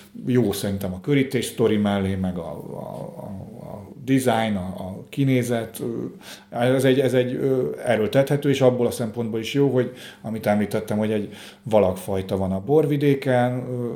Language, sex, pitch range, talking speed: Hungarian, male, 100-125 Hz, 155 wpm